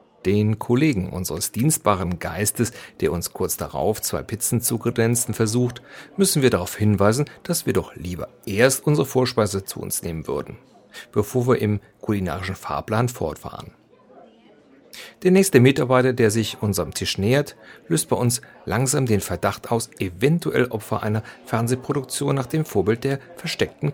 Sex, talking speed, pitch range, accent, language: male, 145 wpm, 100-130 Hz, German, German